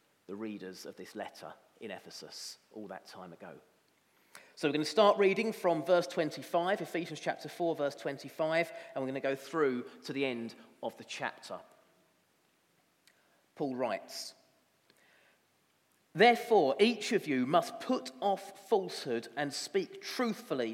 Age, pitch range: 40-59, 160-215 Hz